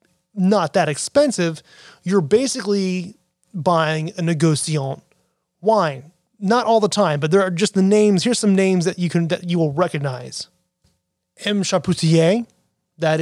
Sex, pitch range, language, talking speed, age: male, 160-205 Hz, English, 145 wpm, 30-49